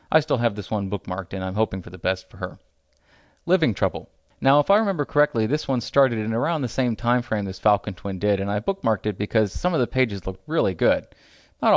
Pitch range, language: 100-130 Hz, English